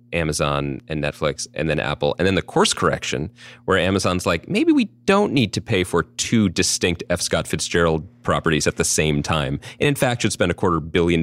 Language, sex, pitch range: English, male, 80-120 Hz